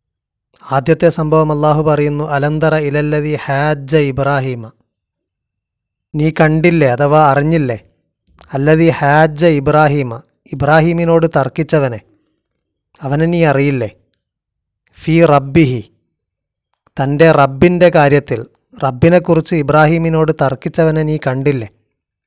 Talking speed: 80 wpm